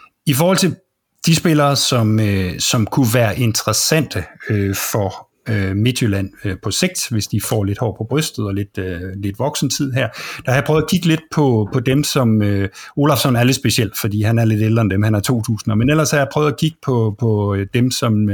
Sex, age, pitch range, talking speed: male, 50-69, 105-135 Hz, 225 wpm